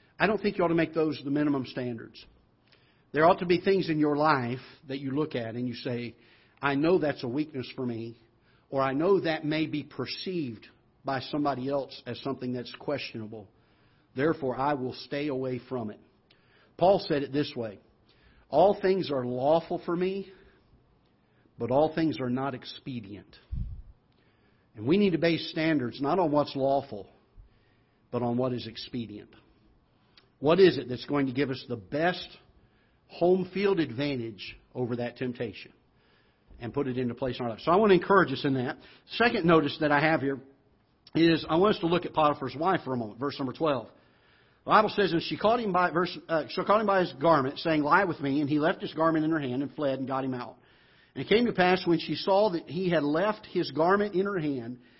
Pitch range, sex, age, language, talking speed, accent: 125-165 Hz, male, 50-69, English, 200 wpm, American